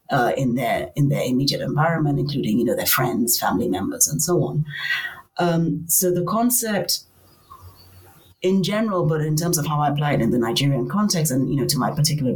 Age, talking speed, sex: 30-49, 200 wpm, female